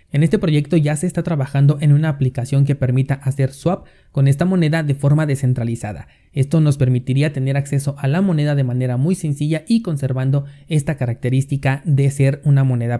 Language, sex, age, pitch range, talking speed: Spanish, male, 30-49, 130-155 Hz, 185 wpm